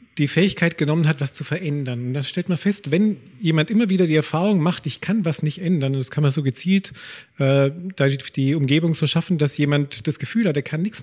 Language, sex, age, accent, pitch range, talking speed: German, male, 40-59, German, 145-180 Hz, 235 wpm